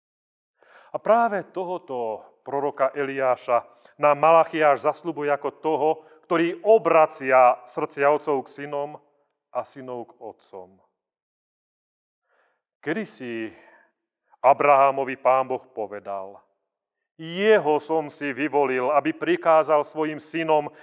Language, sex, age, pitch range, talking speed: Slovak, male, 40-59, 120-160 Hz, 100 wpm